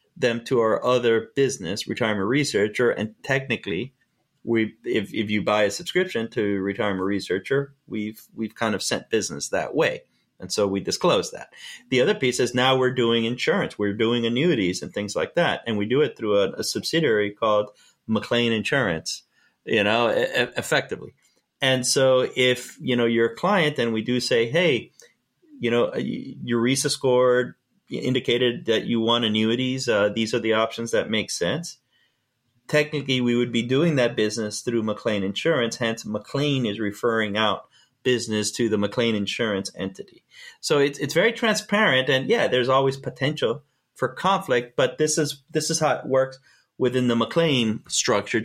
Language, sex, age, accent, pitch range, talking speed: English, male, 30-49, American, 115-140 Hz, 170 wpm